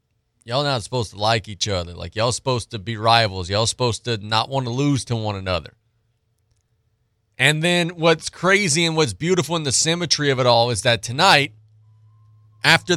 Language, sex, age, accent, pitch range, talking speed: English, male, 30-49, American, 110-140 Hz, 185 wpm